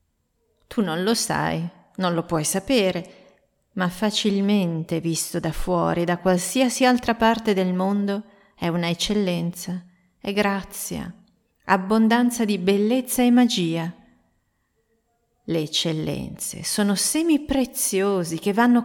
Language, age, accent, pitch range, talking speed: Italian, 40-59, native, 170-220 Hz, 115 wpm